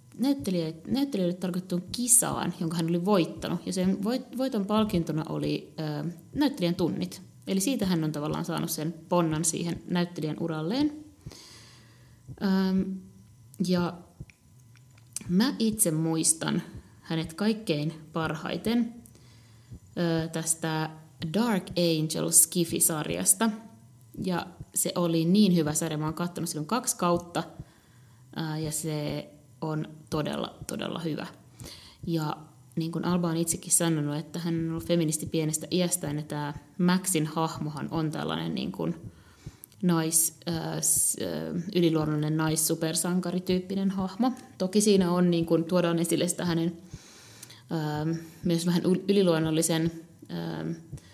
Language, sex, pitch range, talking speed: Finnish, female, 155-180 Hz, 115 wpm